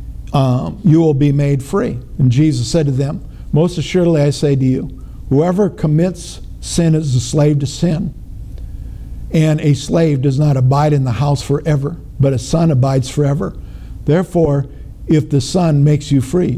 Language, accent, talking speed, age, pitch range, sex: English, American, 170 wpm, 50-69, 130-160 Hz, male